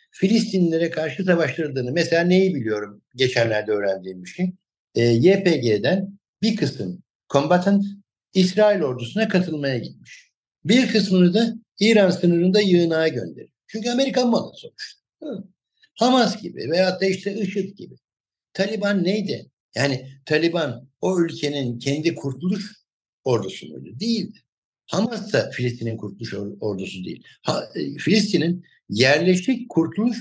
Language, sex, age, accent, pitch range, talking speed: Turkish, male, 60-79, native, 140-200 Hz, 110 wpm